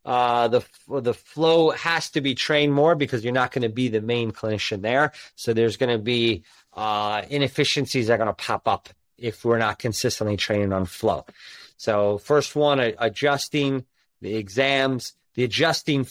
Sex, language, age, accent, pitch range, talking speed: male, English, 30-49, American, 105-130 Hz, 170 wpm